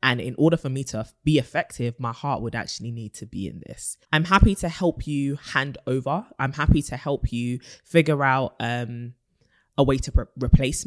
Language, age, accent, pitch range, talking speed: English, 20-39, British, 120-140 Hz, 200 wpm